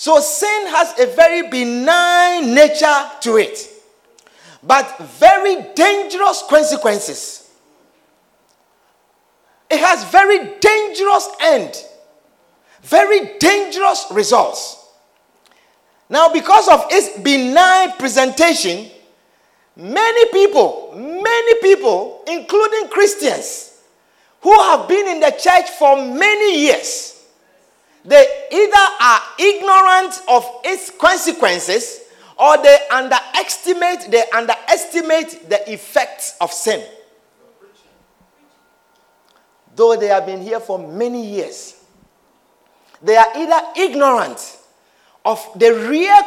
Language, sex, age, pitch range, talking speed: English, male, 50-69, 230-390 Hz, 95 wpm